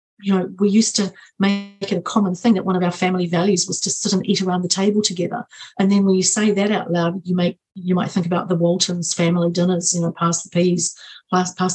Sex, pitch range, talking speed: female, 180-215 Hz, 255 wpm